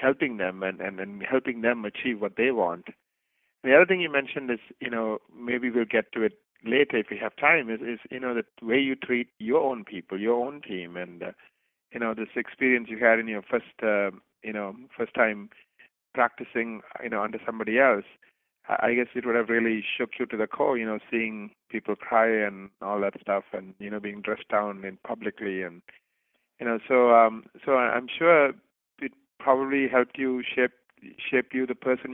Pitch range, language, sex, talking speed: 105-130 Hz, English, male, 205 wpm